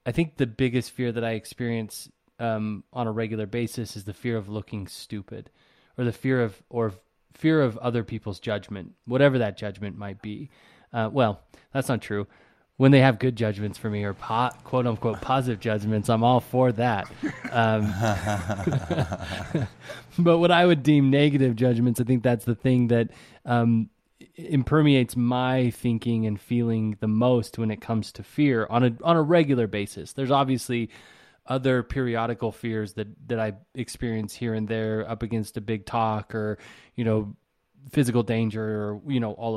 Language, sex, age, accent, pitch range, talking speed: English, male, 20-39, American, 110-130 Hz, 175 wpm